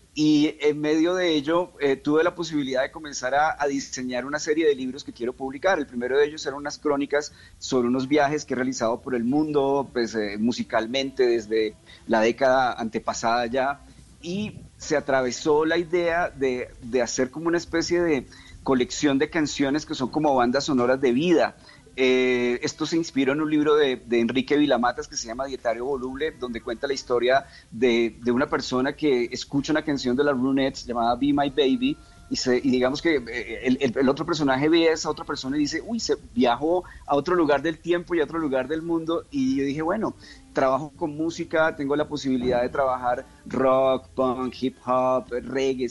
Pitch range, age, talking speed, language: 125-155 Hz, 30-49, 195 wpm, Spanish